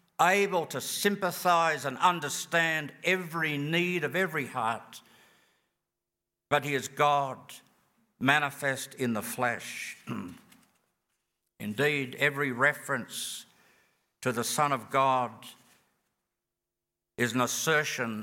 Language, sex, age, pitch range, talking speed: English, male, 60-79, 135-175 Hz, 95 wpm